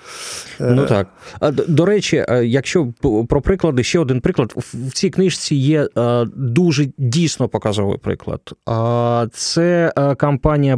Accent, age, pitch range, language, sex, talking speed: native, 20-39, 110-155 Hz, Ukrainian, male, 110 wpm